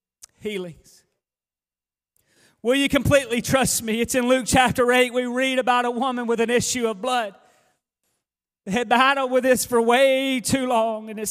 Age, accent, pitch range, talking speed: 30-49, American, 220-255 Hz, 170 wpm